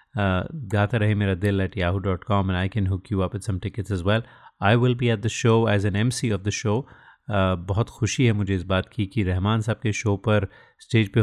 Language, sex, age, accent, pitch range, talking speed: Hindi, male, 30-49, native, 95-115 Hz, 230 wpm